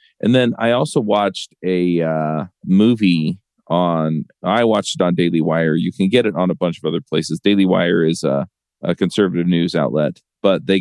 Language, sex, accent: English, male, American